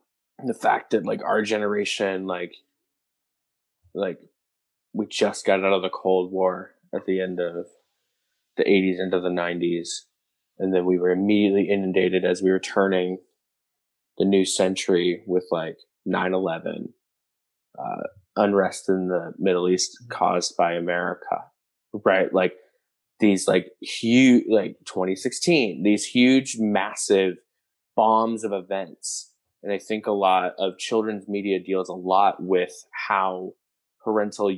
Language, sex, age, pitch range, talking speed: English, male, 20-39, 90-100 Hz, 135 wpm